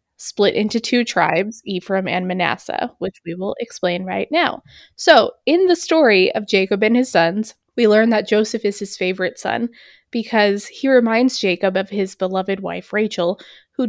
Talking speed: 175 wpm